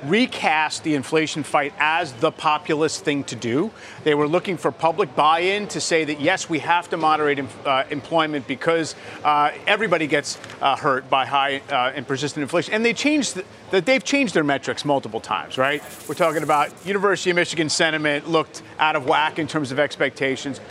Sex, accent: male, American